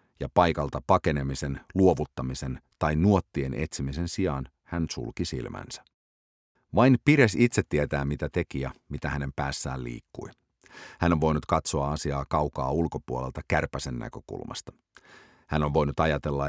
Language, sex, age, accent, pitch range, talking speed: English, male, 50-69, Finnish, 70-85 Hz, 125 wpm